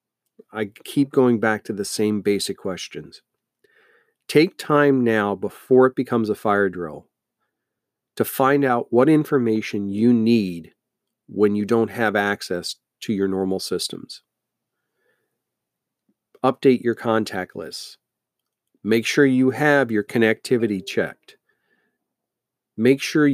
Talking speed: 120 wpm